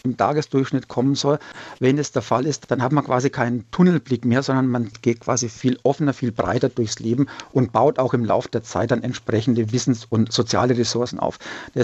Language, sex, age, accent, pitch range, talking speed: German, male, 50-69, German, 115-135 Hz, 210 wpm